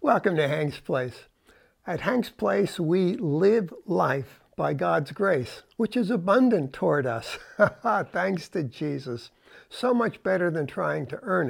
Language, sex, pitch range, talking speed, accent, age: English, male, 150-205 Hz, 145 wpm, American, 60-79